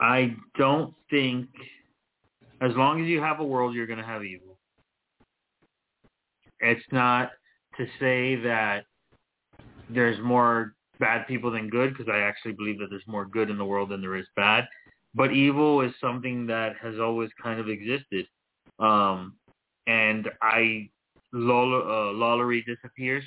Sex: male